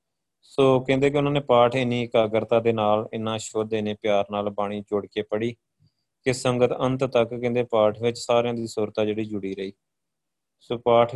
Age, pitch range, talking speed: 20-39, 110-135 Hz, 185 wpm